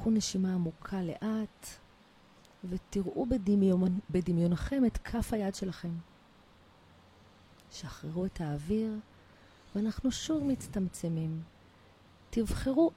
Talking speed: 80 wpm